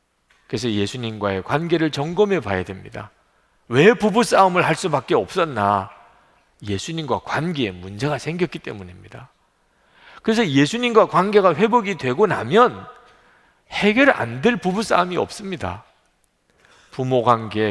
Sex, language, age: male, Korean, 40-59